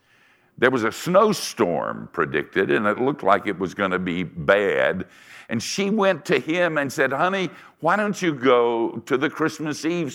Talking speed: 185 wpm